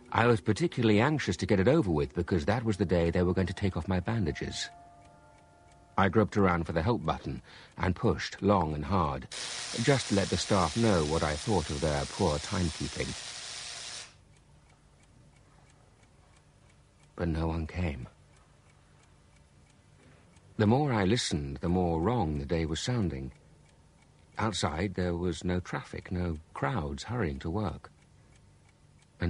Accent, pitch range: British, 80-105 Hz